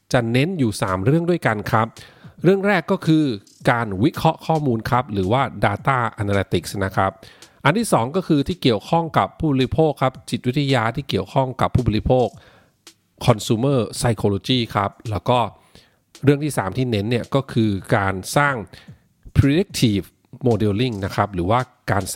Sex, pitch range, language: male, 100-135 Hz, Thai